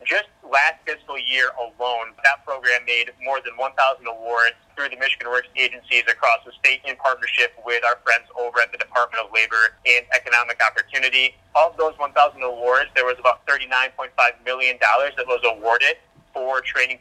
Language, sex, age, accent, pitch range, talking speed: English, male, 30-49, American, 120-130 Hz, 175 wpm